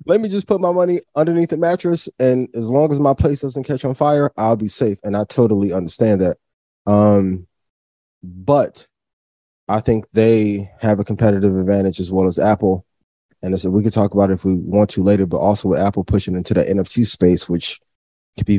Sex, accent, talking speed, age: male, American, 205 wpm, 20-39